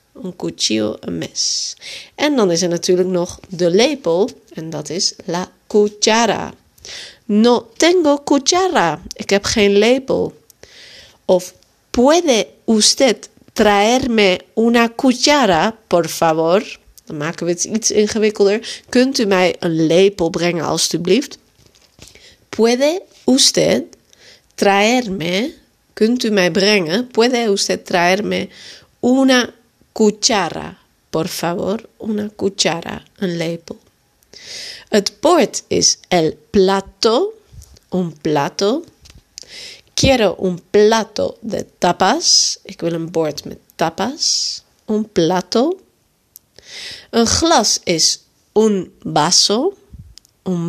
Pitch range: 180-250 Hz